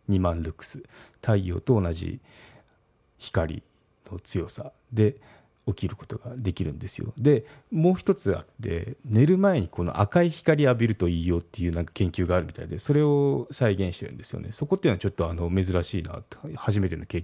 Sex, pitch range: male, 90-120 Hz